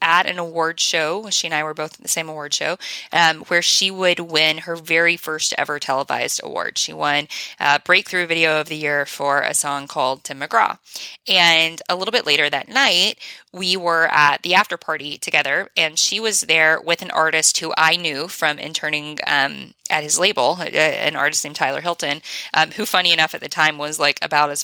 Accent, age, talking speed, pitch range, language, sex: American, 10-29, 210 wpm, 155-180 Hz, English, female